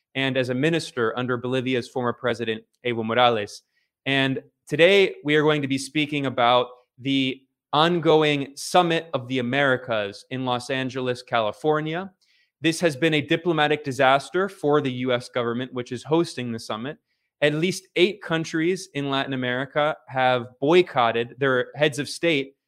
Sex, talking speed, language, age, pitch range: male, 150 wpm, English, 20-39, 125-150 Hz